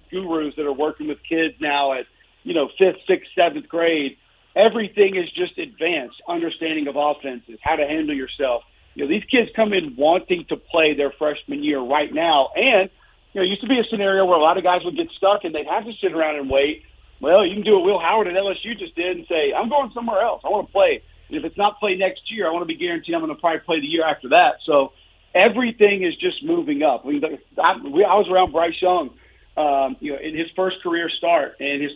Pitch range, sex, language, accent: 150-210 Hz, male, English, American